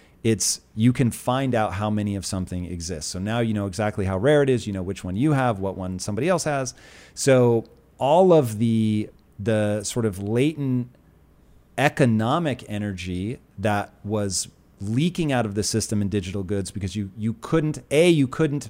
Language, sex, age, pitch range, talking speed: English, male, 30-49, 100-125 Hz, 185 wpm